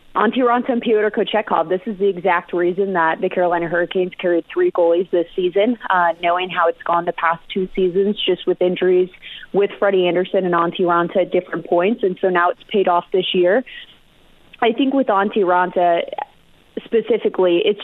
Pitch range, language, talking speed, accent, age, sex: 175-200 Hz, English, 185 wpm, American, 30-49, female